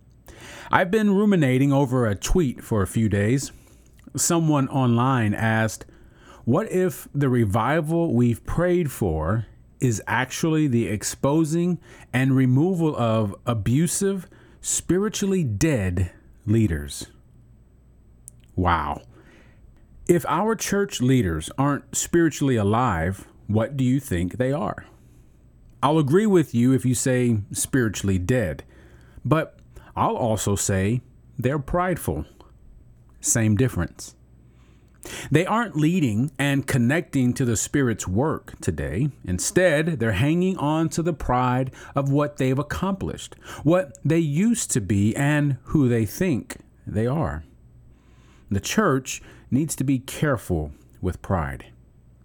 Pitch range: 105-150 Hz